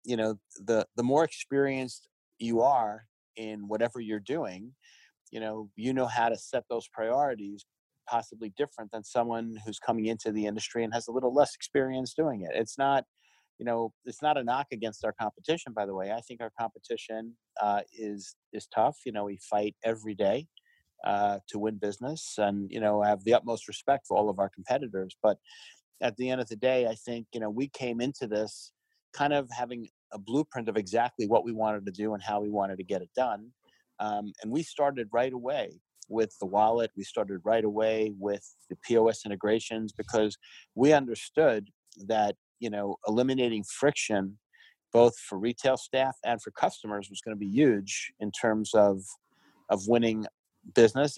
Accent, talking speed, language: American, 190 wpm, English